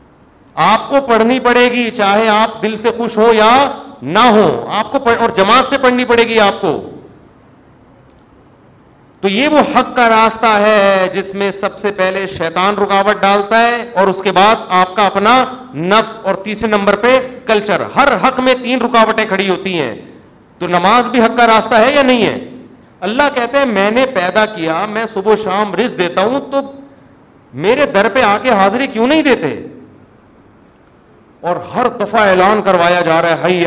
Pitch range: 180-230 Hz